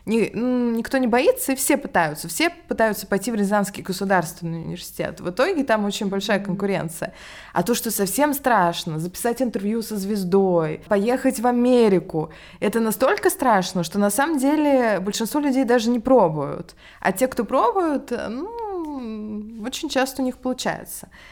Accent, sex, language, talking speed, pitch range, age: native, female, Russian, 150 wpm, 185-245 Hz, 20-39